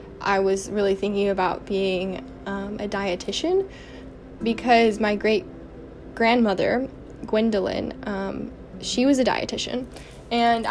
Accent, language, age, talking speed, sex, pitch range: American, English, 10-29, 105 wpm, female, 195-235 Hz